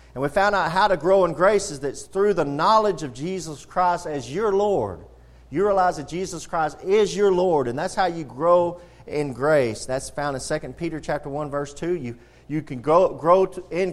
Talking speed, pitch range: 225 wpm, 125-180 Hz